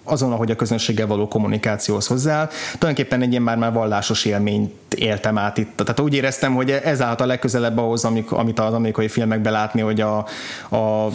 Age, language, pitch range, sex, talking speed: 20-39, Hungarian, 110-125 Hz, male, 170 wpm